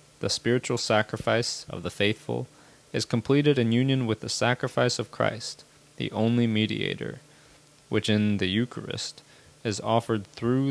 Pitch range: 110-135 Hz